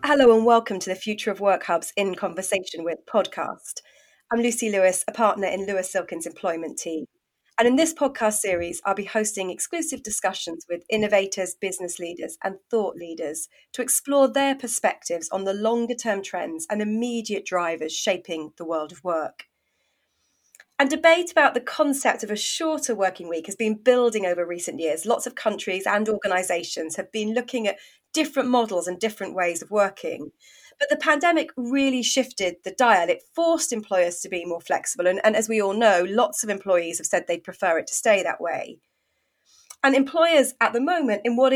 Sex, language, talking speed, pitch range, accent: female, English, 185 wpm, 185-255 Hz, British